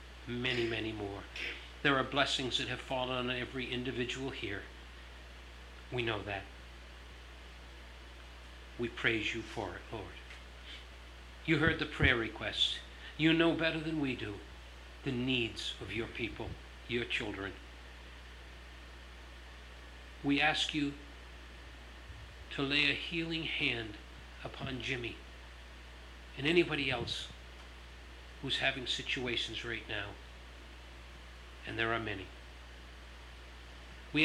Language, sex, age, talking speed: English, male, 60-79, 110 wpm